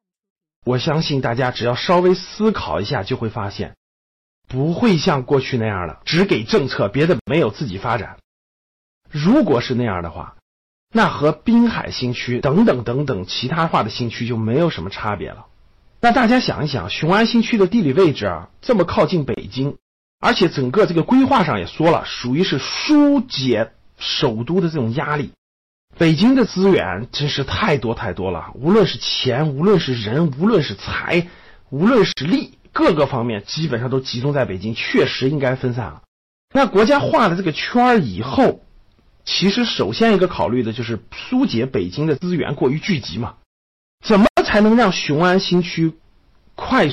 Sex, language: male, Chinese